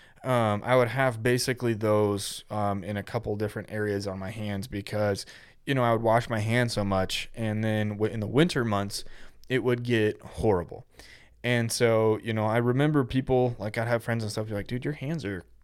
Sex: male